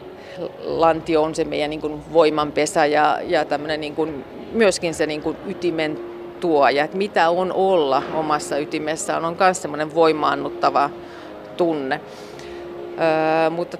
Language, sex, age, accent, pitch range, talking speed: Finnish, female, 40-59, native, 155-175 Hz, 130 wpm